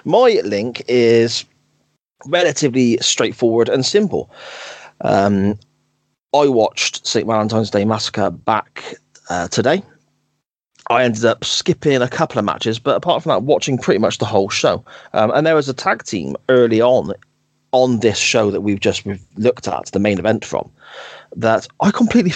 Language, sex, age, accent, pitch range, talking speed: English, male, 30-49, British, 105-130 Hz, 160 wpm